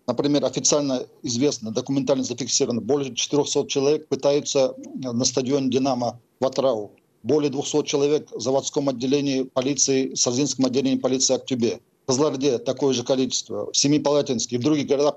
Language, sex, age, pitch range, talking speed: Russian, male, 50-69, 130-150 Hz, 145 wpm